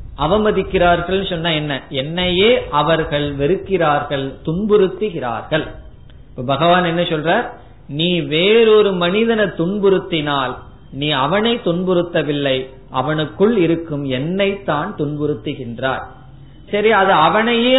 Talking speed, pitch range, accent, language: 55 wpm, 140-195 Hz, native, Tamil